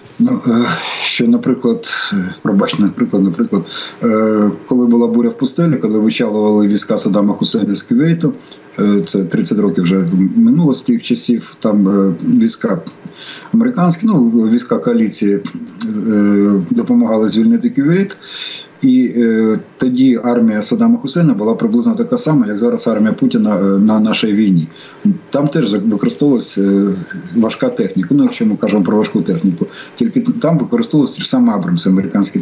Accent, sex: native, male